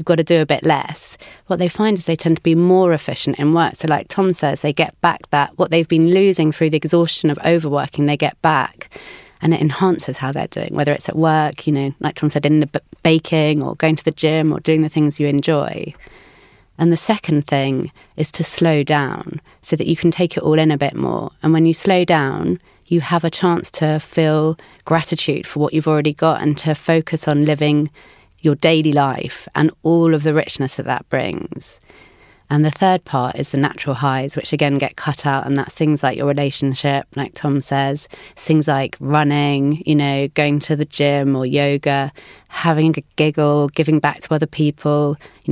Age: 30-49